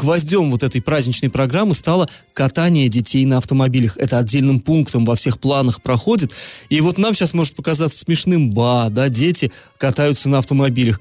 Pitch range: 125-165 Hz